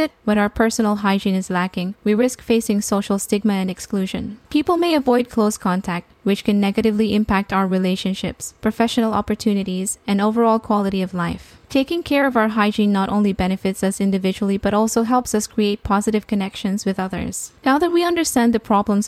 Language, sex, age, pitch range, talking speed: English, female, 10-29, 195-225 Hz, 175 wpm